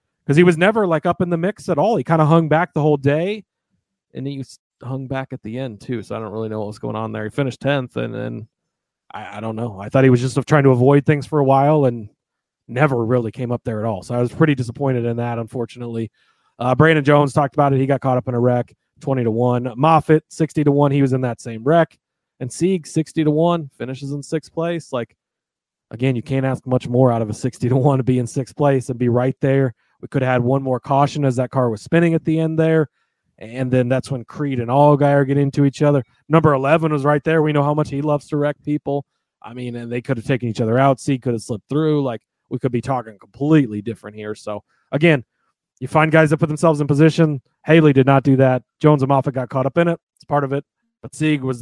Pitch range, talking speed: 125-150 Hz, 265 wpm